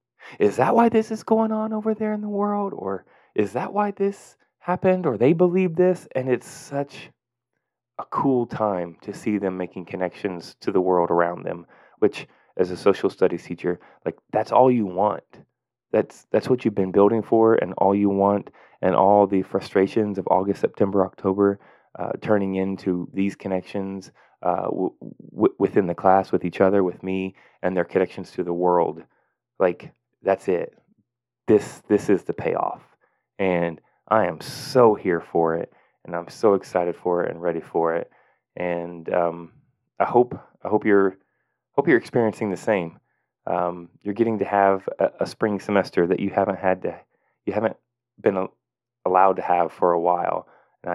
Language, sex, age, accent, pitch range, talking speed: English, male, 20-39, American, 90-120 Hz, 180 wpm